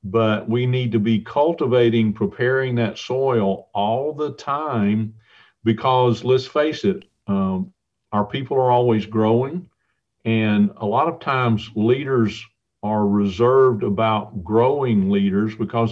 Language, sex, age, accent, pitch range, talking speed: English, male, 50-69, American, 105-125 Hz, 130 wpm